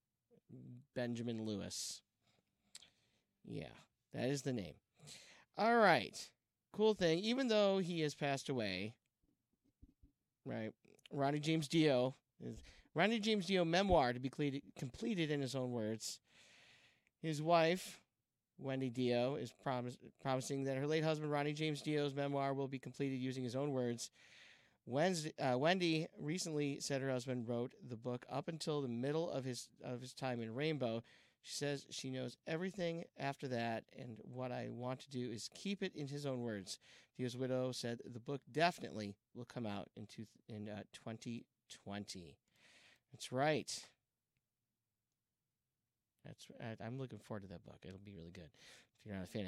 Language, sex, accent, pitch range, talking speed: English, male, American, 115-145 Hz, 155 wpm